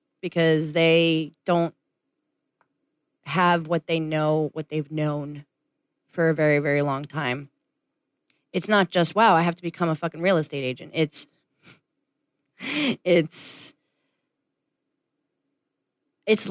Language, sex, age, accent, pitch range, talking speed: English, female, 30-49, American, 155-195 Hz, 115 wpm